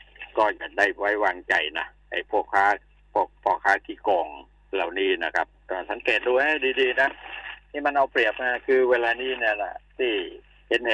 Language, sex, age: Thai, male, 60-79